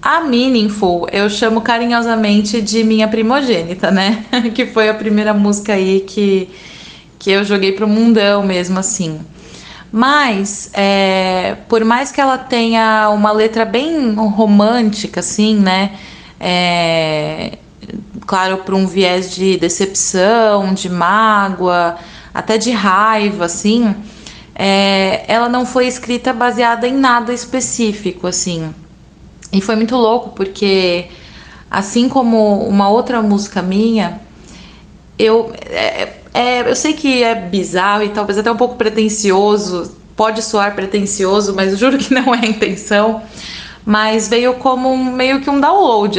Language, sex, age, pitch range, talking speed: Portuguese, female, 20-39, 195-230 Hz, 125 wpm